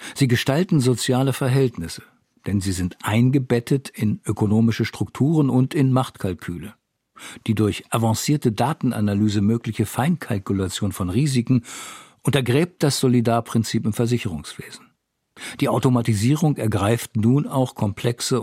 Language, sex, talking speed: German, male, 105 wpm